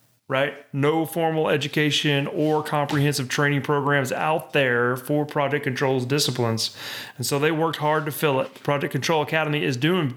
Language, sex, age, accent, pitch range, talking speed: English, male, 30-49, American, 135-160 Hz, 160 wpm